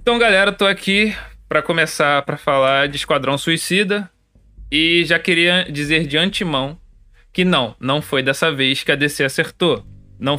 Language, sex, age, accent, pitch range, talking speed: Portuguese, male, 20-39, Brazilian, 135-180 Hz, 170 wpm